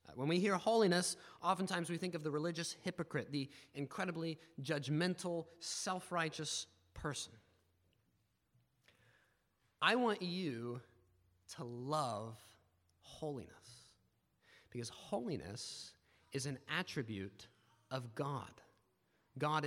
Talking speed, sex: 90 wpm, male